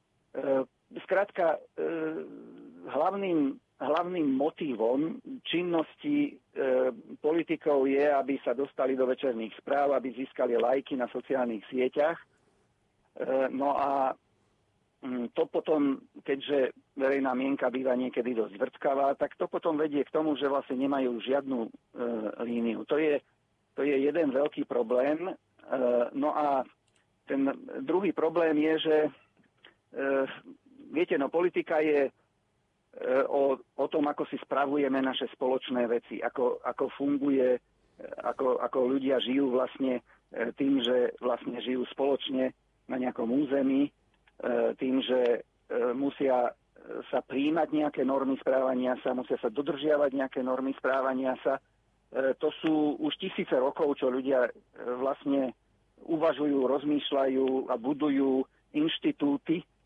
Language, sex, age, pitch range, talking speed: Slovak, male, 50-69, 130-150 Hz, 115 wpm